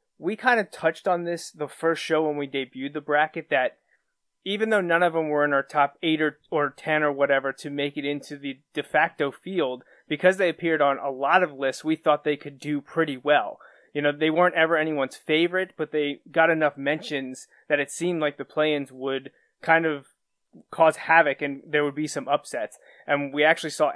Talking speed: 215 wpm